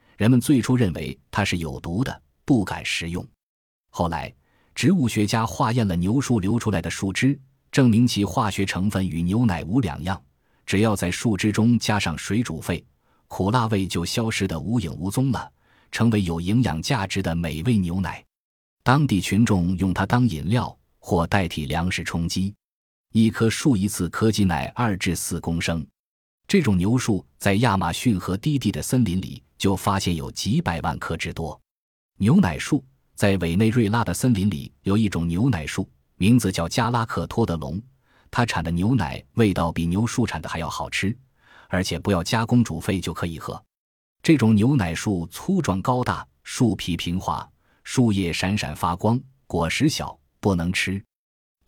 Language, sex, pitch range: Chinese, male, 85-120 Hz